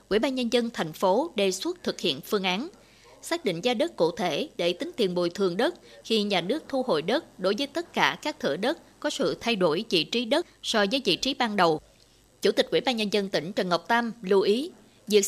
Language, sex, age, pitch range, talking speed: Vietnamese, female, 20-39, 190-265 Hz, 250 wpm